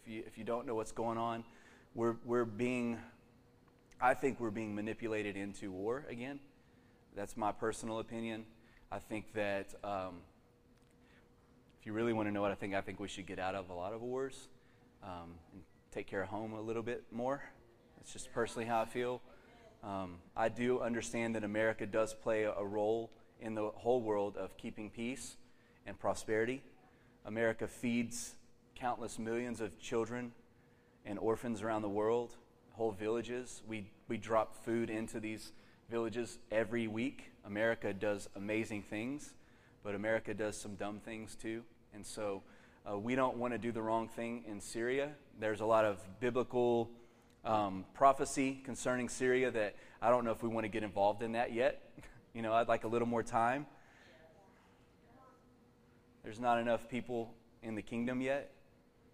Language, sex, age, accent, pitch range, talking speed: English, male, 30-49, American, 110-120 Hz, 165 wpm